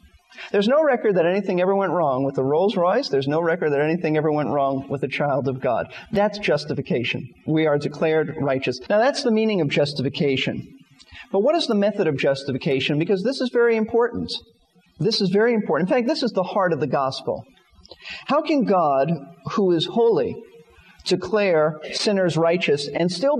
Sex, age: male, 40-59